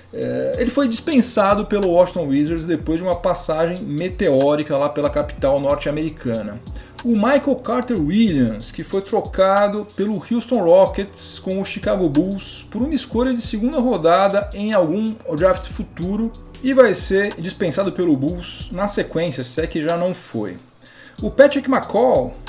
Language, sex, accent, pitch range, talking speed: Portuguese, male, Brazilian, 150-225 Hz, 150 wpm